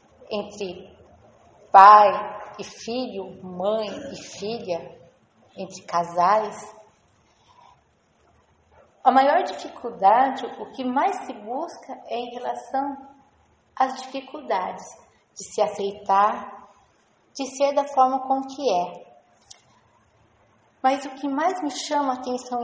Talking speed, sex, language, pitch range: 105 wpm, female, Portuguese, 195-260 Hz